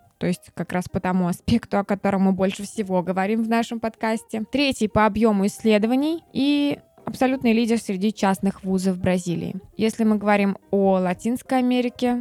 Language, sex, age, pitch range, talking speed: Russian, female, 20-39, 185-220 Hz, 160 wpm